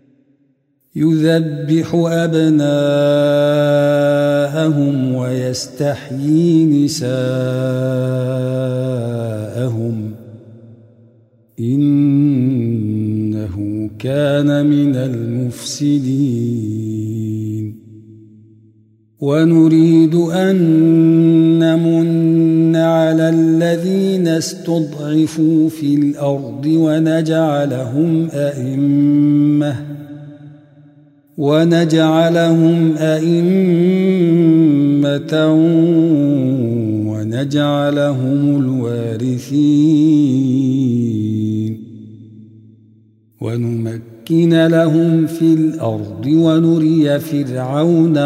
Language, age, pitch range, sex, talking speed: Arabic, 50-69, 115-155 Hz, male, 35 wpm